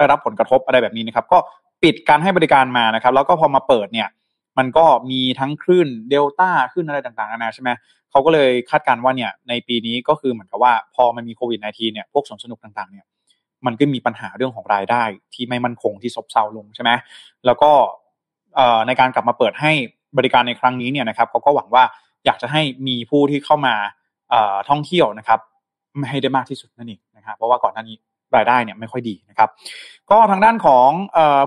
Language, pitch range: Thai, 120-145 Hz